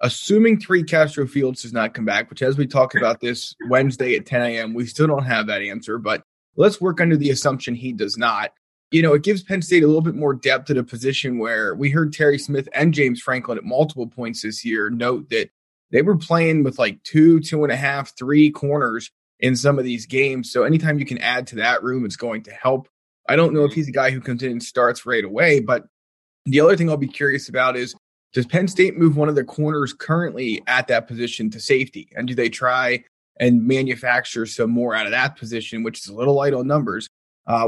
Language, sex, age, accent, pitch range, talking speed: English, male, 20-39, American, 120-150 Hz, 235 wpm